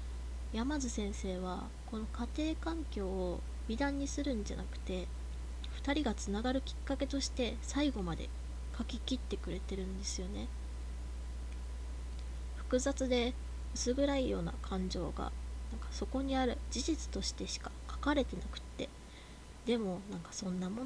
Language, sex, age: Japanese, female, 20-39